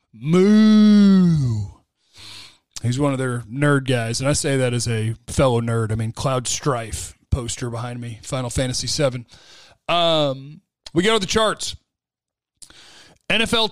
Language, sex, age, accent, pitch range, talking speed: English, male, 40-59, American, 130-190 Hz, 140 wpm